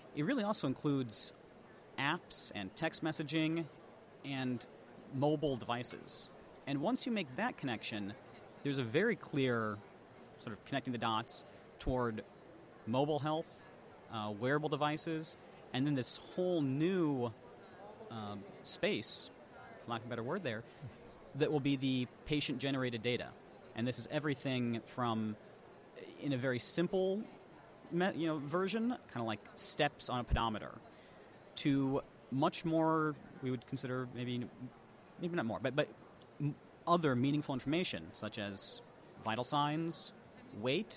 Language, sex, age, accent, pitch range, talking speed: English, male, 40-59, American, 115-155 Hz, 135 wpm